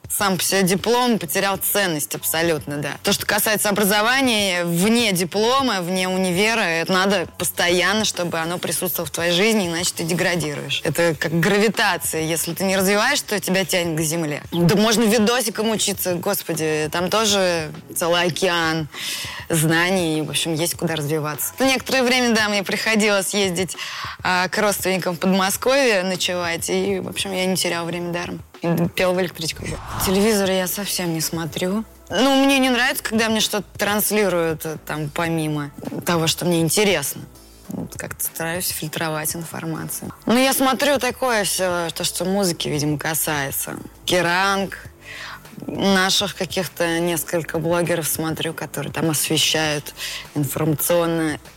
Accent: native